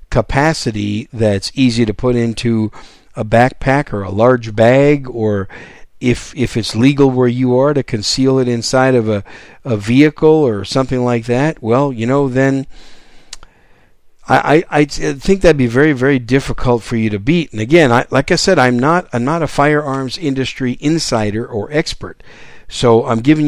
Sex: male